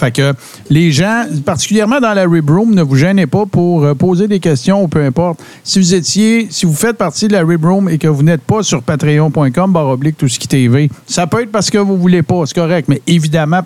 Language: French